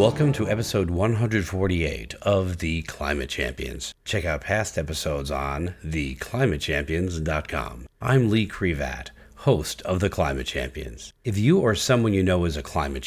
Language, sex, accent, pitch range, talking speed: English, male, American, 75-110 Hz, 140 wpm